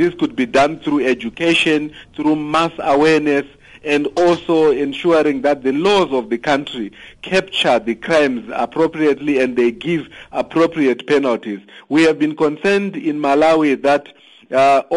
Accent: South African